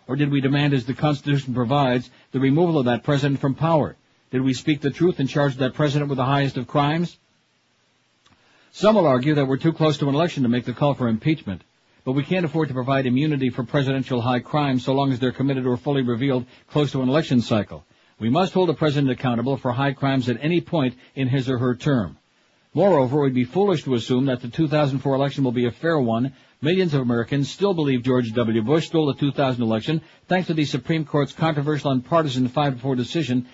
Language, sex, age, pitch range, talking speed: English, male, 60-79, 125-150 Hz, 220 wpm